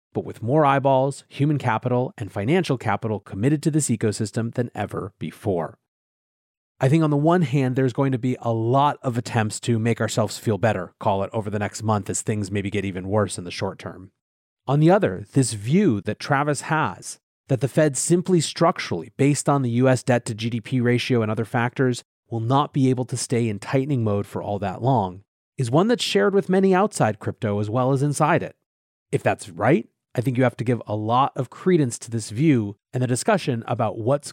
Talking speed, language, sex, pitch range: 210 wpm, English, male, 110-140 Hz